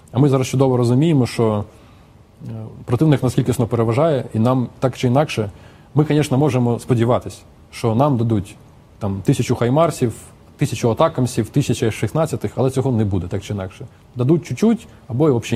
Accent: native